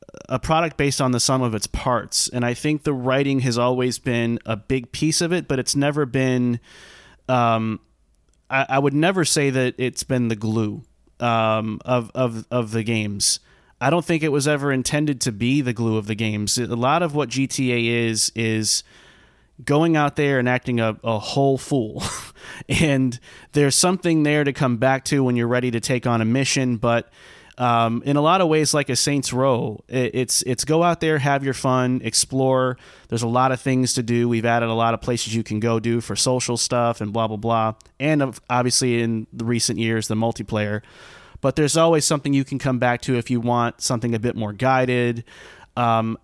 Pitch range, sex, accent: 115-140 Hz, male, American